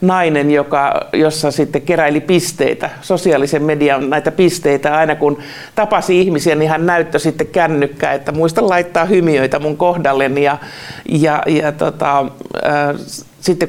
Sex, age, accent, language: male, 50-69, native, Finnish